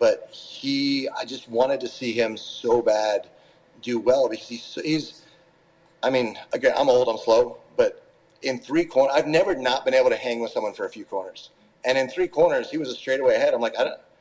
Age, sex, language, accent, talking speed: 40-59, male, English, American, 220 wpm